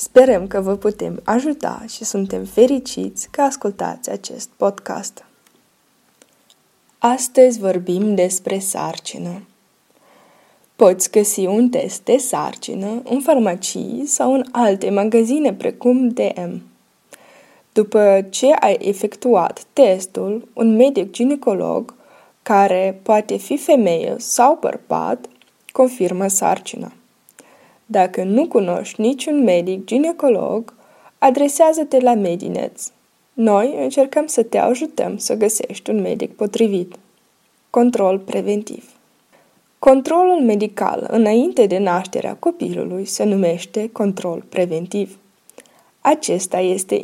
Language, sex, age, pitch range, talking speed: Romanian, female, 20-39, 195-260 Hz, 100 wpm